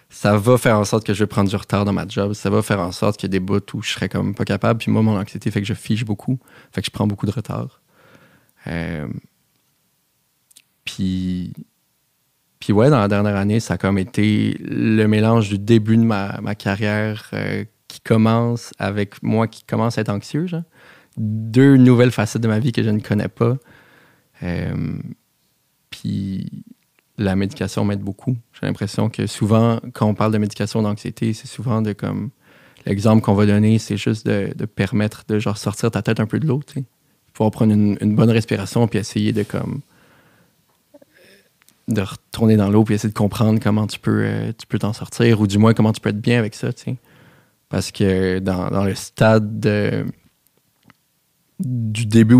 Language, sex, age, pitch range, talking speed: French, male, 30-49, 100-115 Hz, 200 wpm